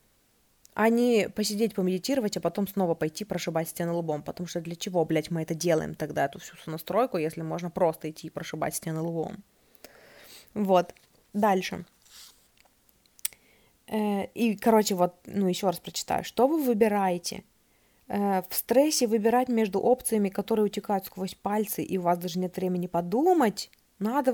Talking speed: 150 wpm